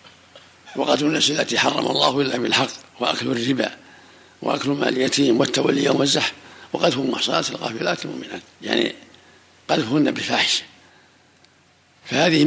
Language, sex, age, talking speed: Arabic, male, 60-79, 110 wpm